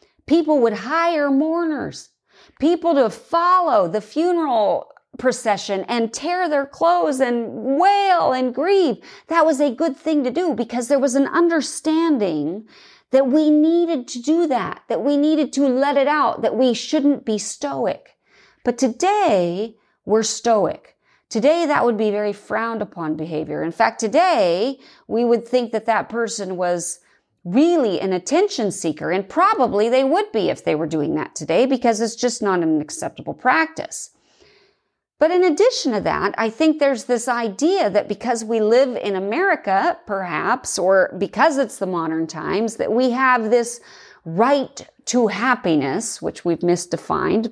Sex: female